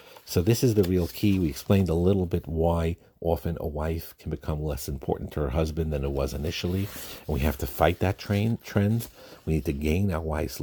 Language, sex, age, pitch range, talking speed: English, male, 50-69, 75-95 Hz, 220 wpm